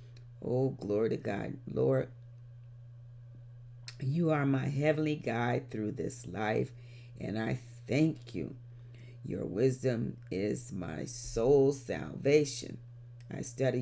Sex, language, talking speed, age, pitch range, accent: female, English, 110 wpm, 40-59, 120-135 Hz, American